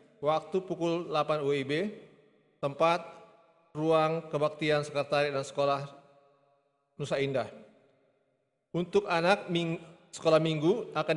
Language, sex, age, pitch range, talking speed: Indonesian, male, 30-49, 140-170 Hz, 95 wpm